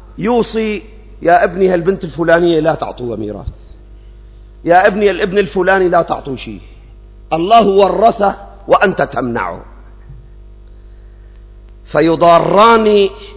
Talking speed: 90 wpm